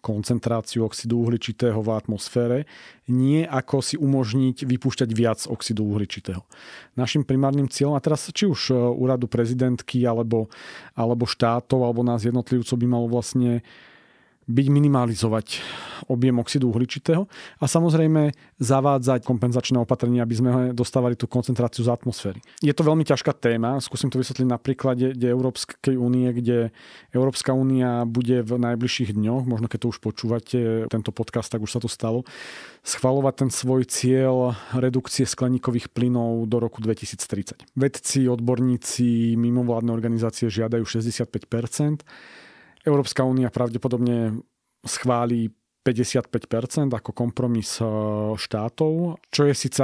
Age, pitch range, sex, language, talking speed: 40-59, 115-130 Hz, male, Slovak, 130 wpm